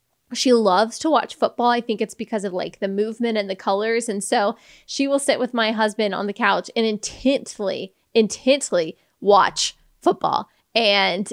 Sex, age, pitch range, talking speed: female, 20-39, 215-275 Hz, 175 wpm